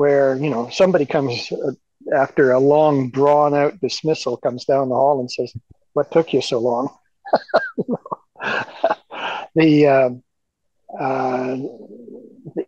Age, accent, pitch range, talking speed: 60-79, American, 135-190 Hz, 120 wpm